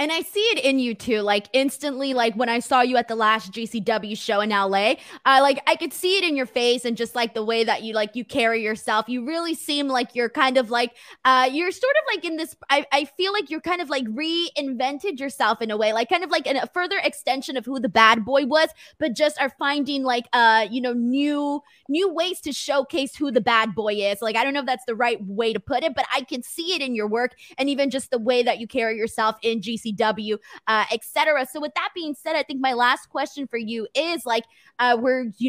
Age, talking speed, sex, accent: 20-39, 260 wpm, female, American